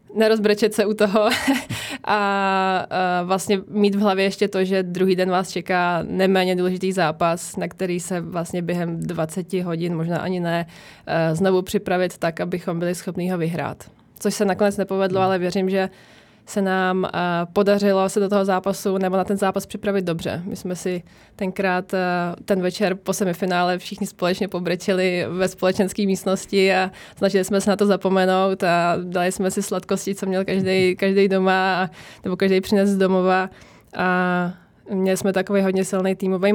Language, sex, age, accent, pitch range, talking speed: Czech, female, 20-39, native, 185-200 Hz, 165 wpm